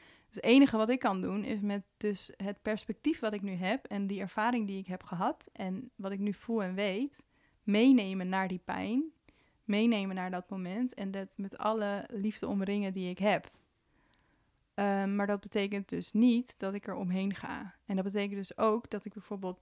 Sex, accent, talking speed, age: female, Dutch, 195 wpm, 20-39